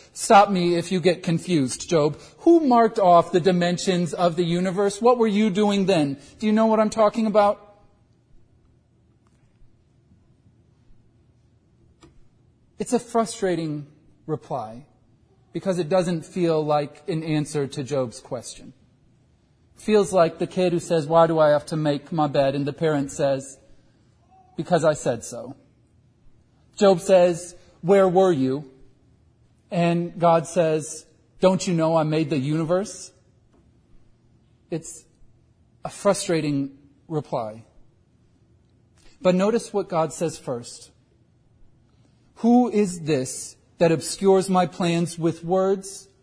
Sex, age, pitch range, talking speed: male, 40-59, 125-180 Hz, 125 wpm